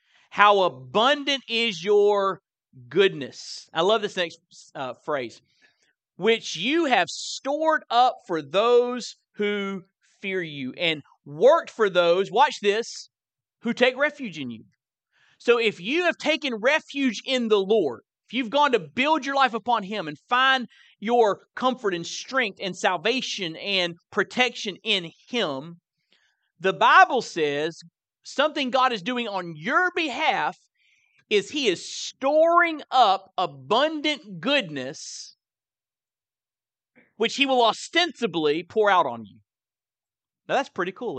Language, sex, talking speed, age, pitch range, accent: English, male, 135 wpm, 40-59, 165-250 Hz, American